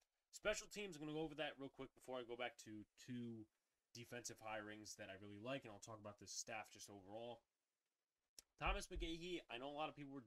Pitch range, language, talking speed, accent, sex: 115-155 Hz, English, 230 wpm, American, male